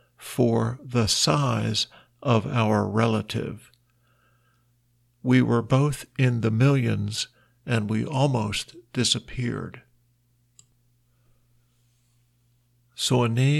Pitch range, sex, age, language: 110-125 Hz, male, 50-69, Thai